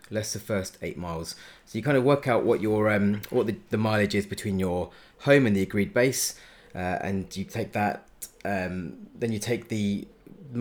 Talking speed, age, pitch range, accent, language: 205 wpm, 30-49, 95-115 Hz, British, English